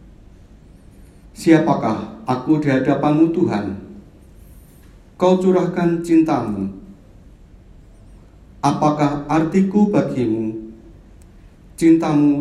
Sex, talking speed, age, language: male, 55 wpm, 50-69, Indonesian